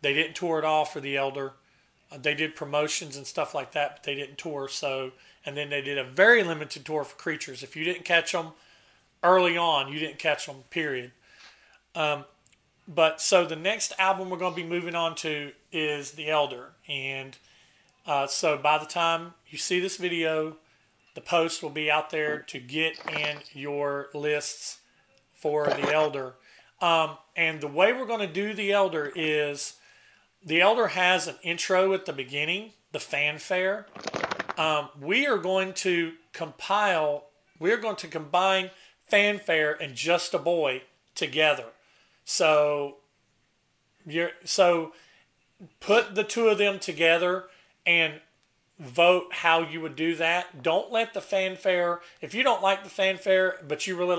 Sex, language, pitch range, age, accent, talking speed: male, English, 150-180 Hz, 40-59, American, 165 wpm